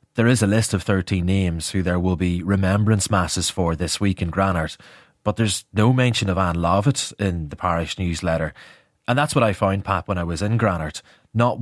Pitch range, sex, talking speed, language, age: 90-110 Hz, male, 210 wpm, English, 20-39